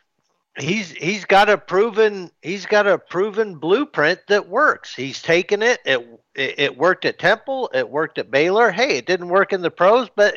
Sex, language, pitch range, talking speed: male, English, 130-200 Hz, 190 wpm